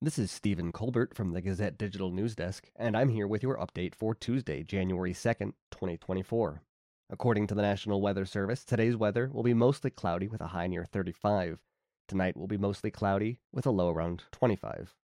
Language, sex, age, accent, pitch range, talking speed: English, male, 30-49, American, 95-115 Hz, 190 wpm